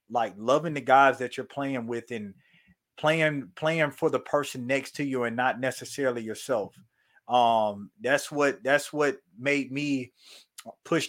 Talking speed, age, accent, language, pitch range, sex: 155 wpm, 30-49, American, English, 125-140 Hz, male